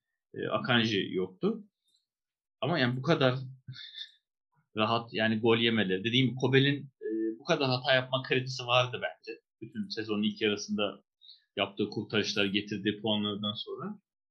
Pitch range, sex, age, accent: 110-155 Hz, male, 30-49, native